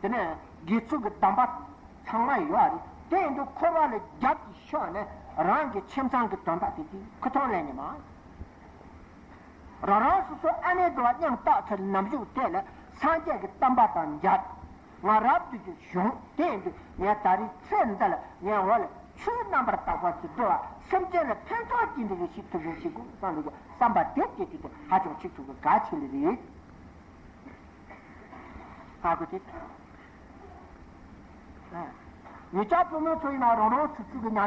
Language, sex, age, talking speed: Italian, male, 50-69, 65 wpm